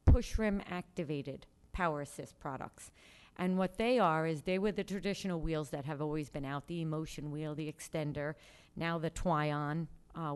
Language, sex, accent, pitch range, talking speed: English, female, American, 150-195 Hz, 175 wpm